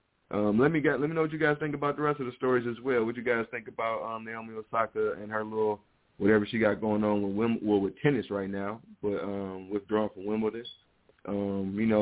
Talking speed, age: 255 wpm, 20-39